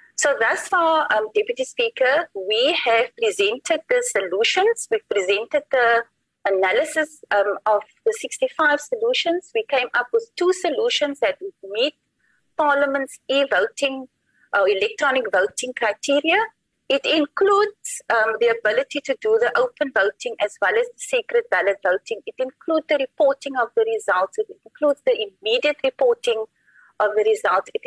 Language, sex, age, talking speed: English, female, 30-49, 150 wpm